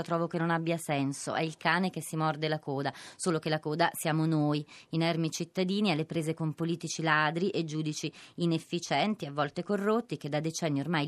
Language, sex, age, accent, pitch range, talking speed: Italian, female, 20-39, native, 150-190 Hz, 195 wpm